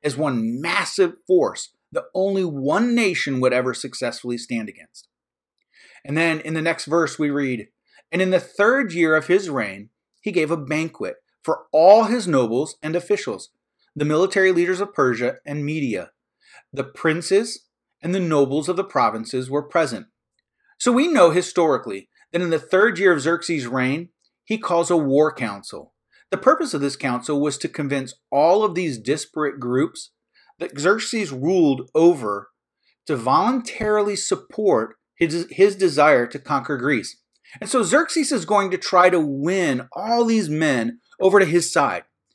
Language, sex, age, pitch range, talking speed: English, male, 30-49, 145-220 Hz, 165 wpm